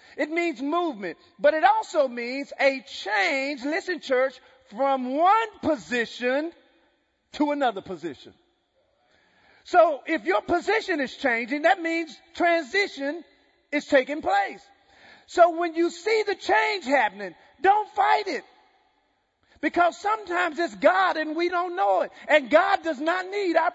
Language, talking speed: English, 135 wpm